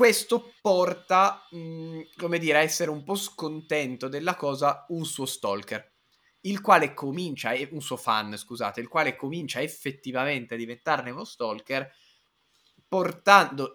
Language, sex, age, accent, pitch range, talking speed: Italian, male, 20-39, native, 115-155 Hz, 135 wpm